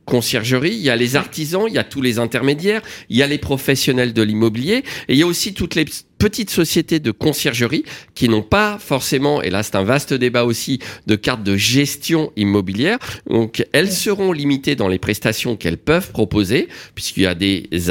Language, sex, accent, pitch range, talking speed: French, male, French, 105-145 Hz, 200 wpm